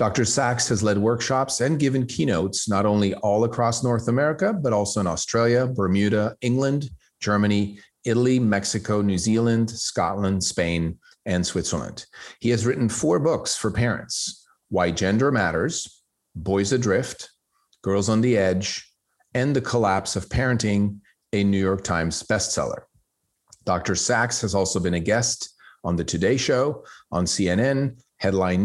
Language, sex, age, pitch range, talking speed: English, male, 40-59, 95-120 Hz, 145 wpm